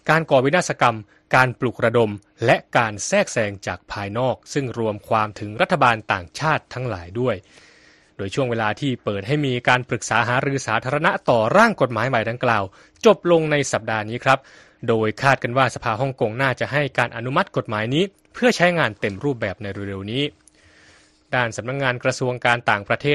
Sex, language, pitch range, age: male, Thai, 110-140 Hz, 20-39